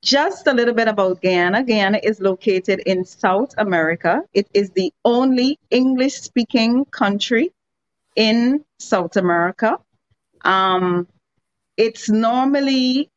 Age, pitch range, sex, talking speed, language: 30-49, 185-235 Hz, female, 110 wpm, English